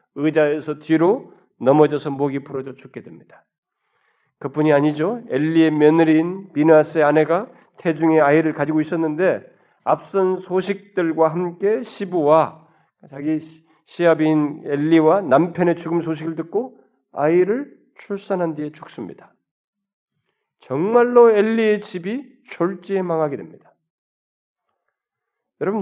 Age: 40-59